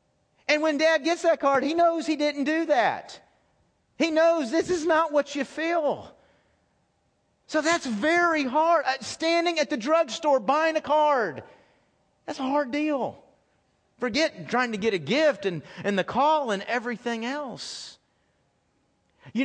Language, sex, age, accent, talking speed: English, male, 40-59, American, 155 wpm